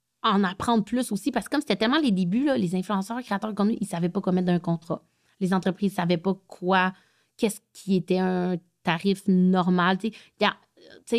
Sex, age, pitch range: female, 30-49, 180-220 Hz